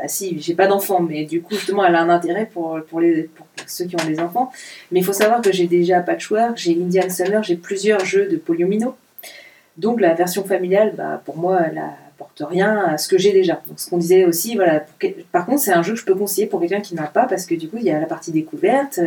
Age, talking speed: 30-49, 265 wpm